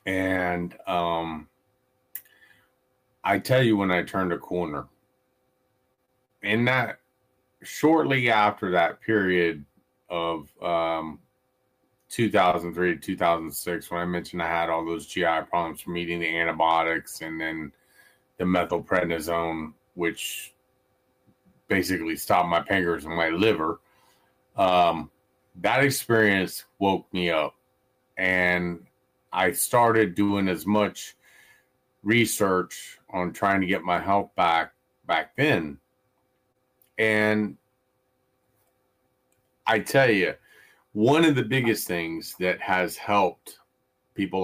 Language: English